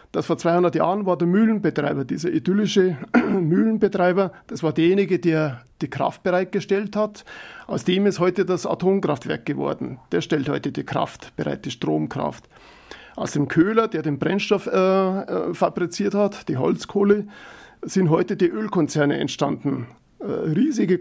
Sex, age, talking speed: male, 40-59, 145 wpm